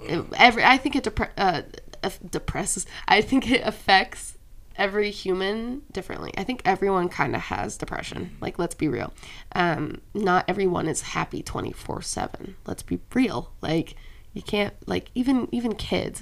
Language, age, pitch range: English, 20-39, 160-205 Hz